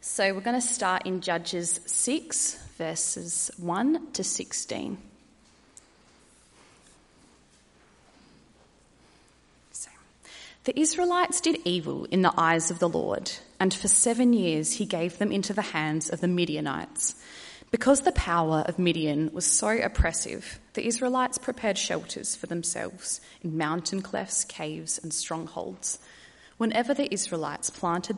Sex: female